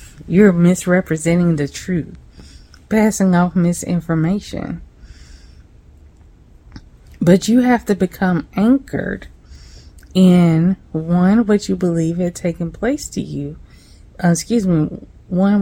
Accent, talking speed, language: American, 105 wpm, English